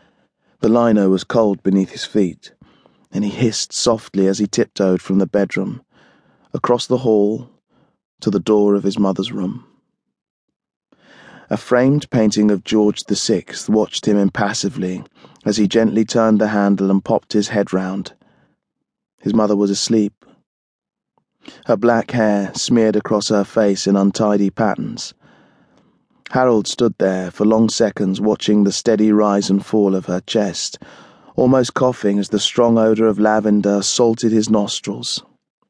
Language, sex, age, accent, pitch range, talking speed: English, male, 20-39, British, 100-115 Hz, 145 wpm